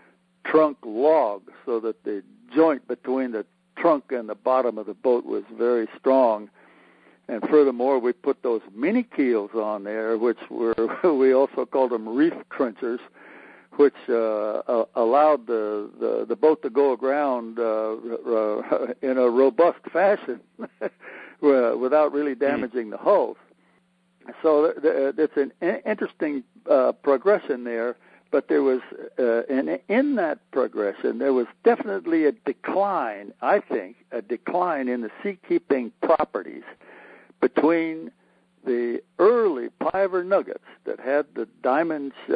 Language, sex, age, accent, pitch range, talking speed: English, male, 60-79, American, 115-155 Hz, 130 wpm